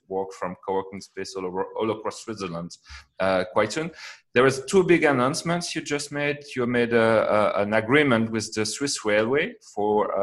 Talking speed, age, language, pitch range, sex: 190 wpm, 30-49, English, 105-135 Hz, male